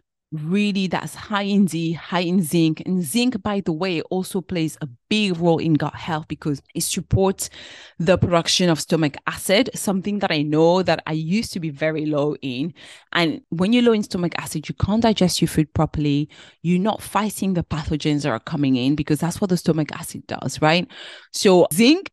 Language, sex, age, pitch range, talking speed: English, female, 30-49, 155-200 Hz, 200 wpm